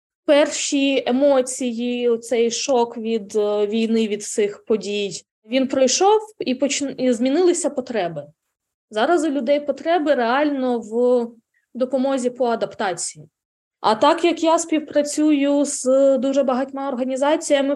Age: 20-39